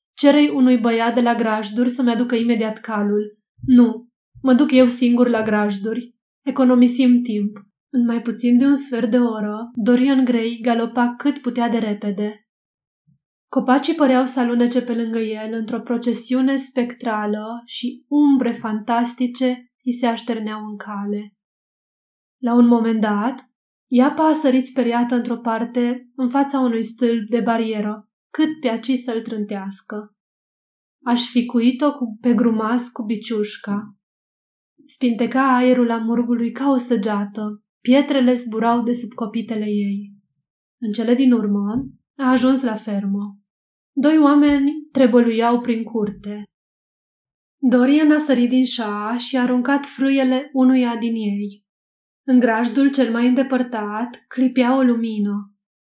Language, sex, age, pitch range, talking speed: Romanian, female, 20-39, 220-255 Hz, 135 wpm